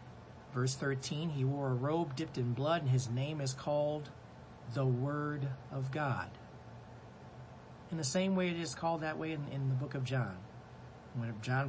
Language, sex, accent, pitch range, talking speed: English, male, American, 125-155 Hz, 180 wpm